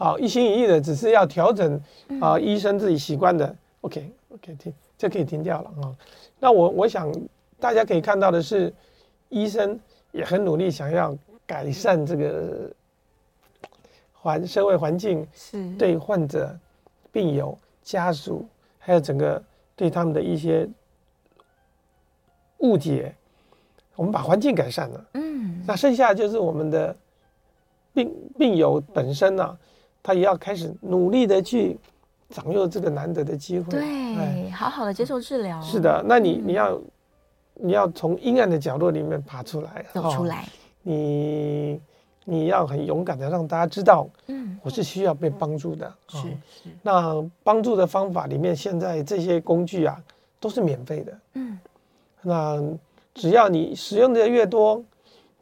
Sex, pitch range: male, 160-205 Hz